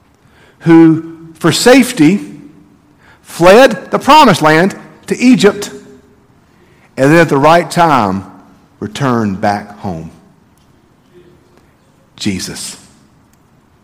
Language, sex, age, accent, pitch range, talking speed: English, male, 50-69, American, 95-145 Hz, 80 wpm